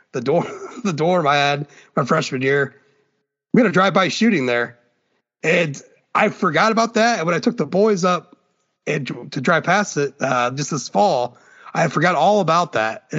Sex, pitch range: male, 140-200 Hz